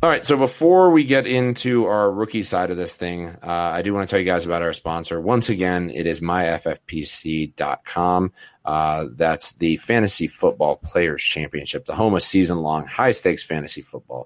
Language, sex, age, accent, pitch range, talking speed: English, male, 30-49, American, 85-120 Hz, 190 wpm